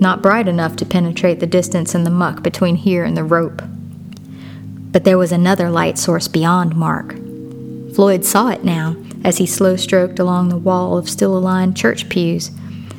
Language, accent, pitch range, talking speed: English, American, 170-195 Hz, 170 wpm